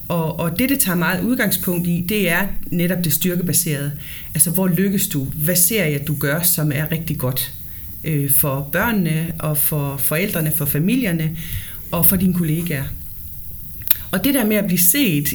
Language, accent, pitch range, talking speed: Danish, native, 150-185 Hz, 170 wpm